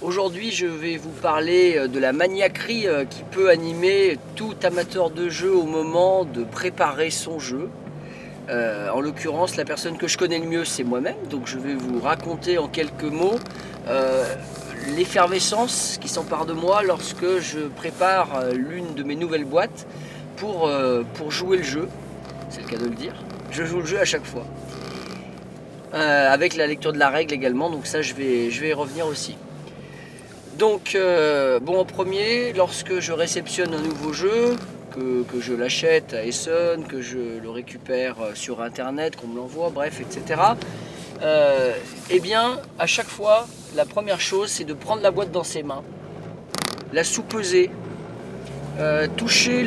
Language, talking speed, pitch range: French, 165 wpm, 135-185 Hz